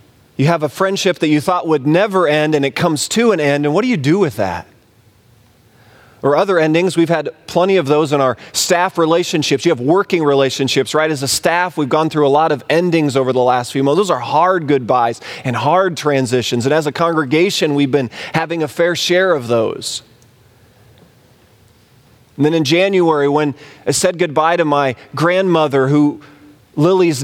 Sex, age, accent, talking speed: male, 30-49, American, 190 wpm